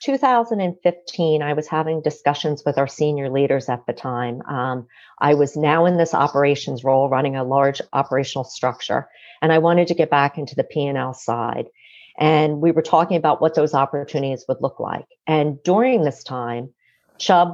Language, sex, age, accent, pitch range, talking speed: English, female, 50-69, American, 135-170 Hz, 175 wpm